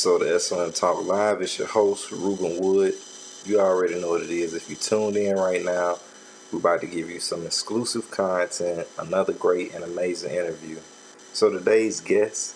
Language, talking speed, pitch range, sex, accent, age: English, 180 wpm, 90-105 Hz, male, American, 30-49